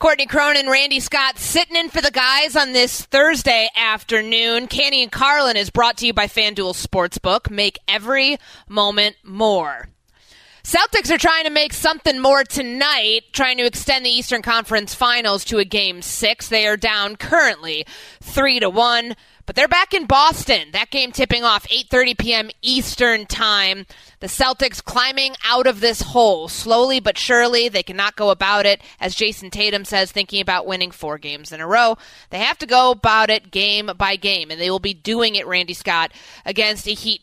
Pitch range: 195-250 Hz